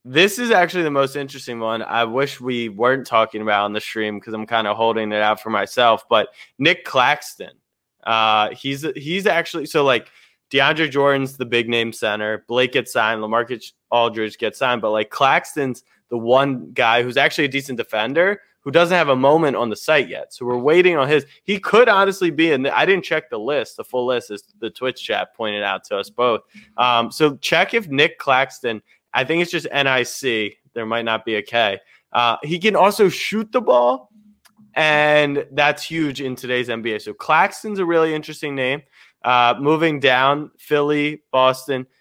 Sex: male